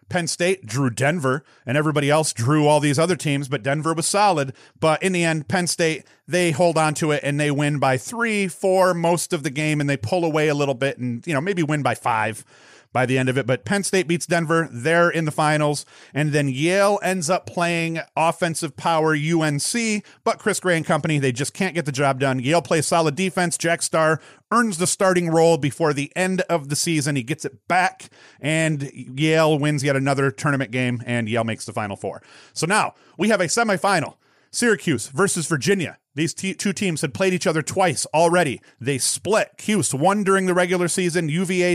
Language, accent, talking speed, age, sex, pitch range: English, American, 210 wpm, 40-59, male, 145-180 Hz